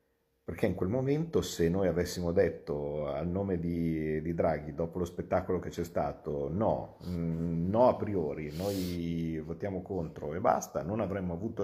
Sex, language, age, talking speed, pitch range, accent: male, Italian, 50-69, 160 wpm, 75-100 Hz, native